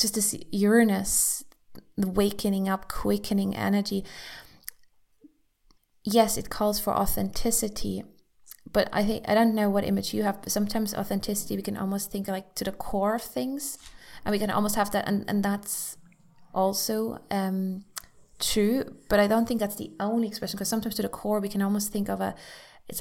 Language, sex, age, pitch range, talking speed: English, female, 20-39, 190-215 Hz, 175 wpm